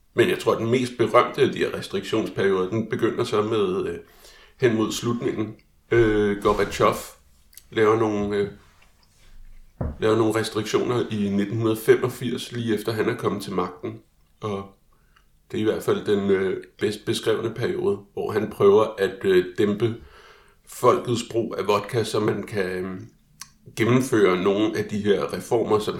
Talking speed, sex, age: 155 wpm, male, 60-79